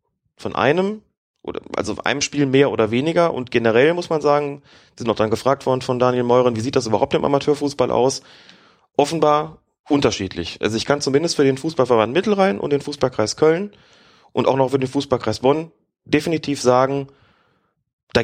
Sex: male